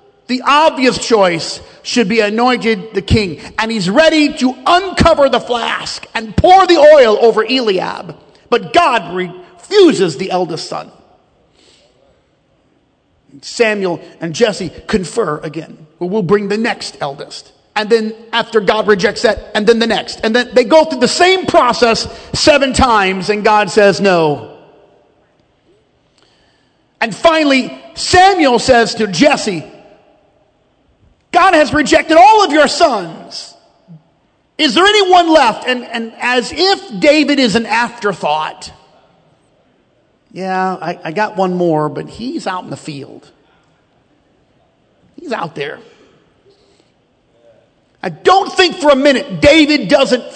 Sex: male